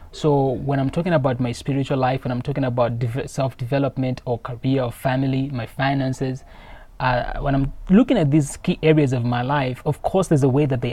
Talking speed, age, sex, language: 205 wpm, 20-39, male, English